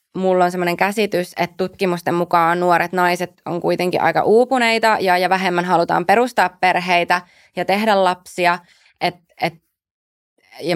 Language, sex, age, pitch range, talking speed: Finnish, female, 20-39, 165-185 Hz, 140 wpm